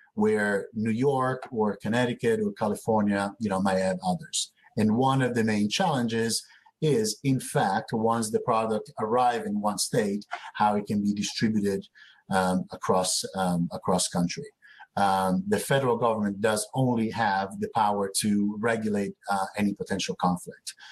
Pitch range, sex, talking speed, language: 100-120 Hz, male, 150 wpm, English